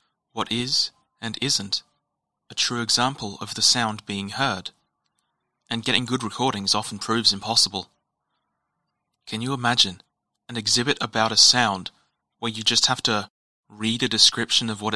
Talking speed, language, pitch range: 150 wpm, English, 105-130 Hz